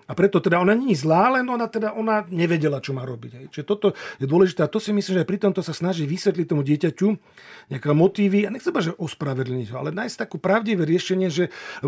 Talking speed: 220 wpm